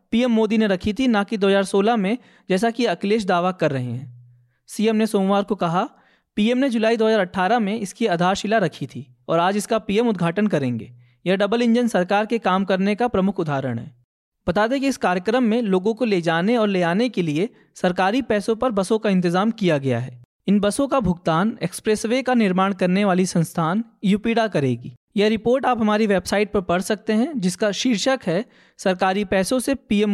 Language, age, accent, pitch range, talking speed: Hindi, 20-39, native, 180-225 Hz, 195 wpm